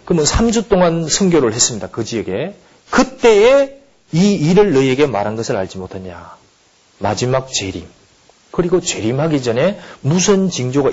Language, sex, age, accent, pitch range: Korean, male, 40-59, native, 130-195 Hz